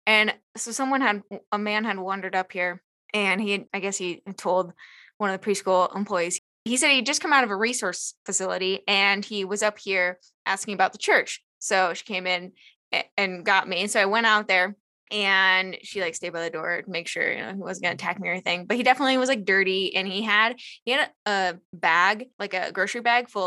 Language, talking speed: English, 235 wpm